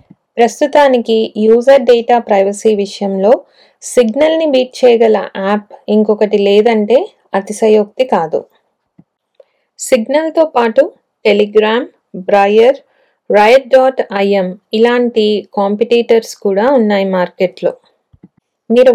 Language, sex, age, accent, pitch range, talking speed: Telugu, female, 20-39, native, 205-245 Hz, 80 wpm